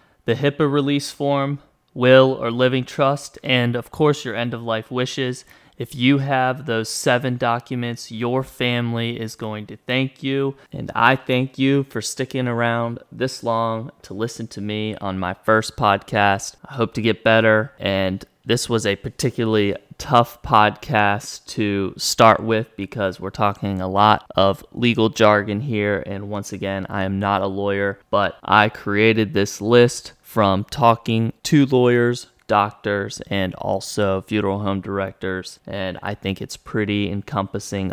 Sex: male